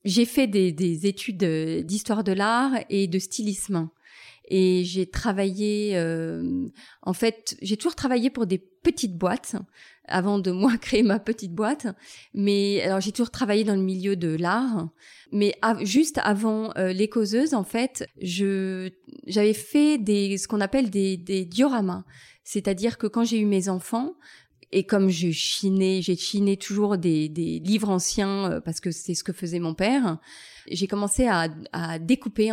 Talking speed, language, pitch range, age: 170 wpm, French, 180-225 Hz, 30-49